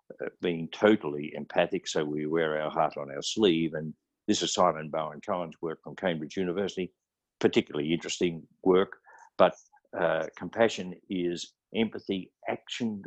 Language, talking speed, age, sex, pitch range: English, 140 wpm, 50-69, male, 80-105 Hz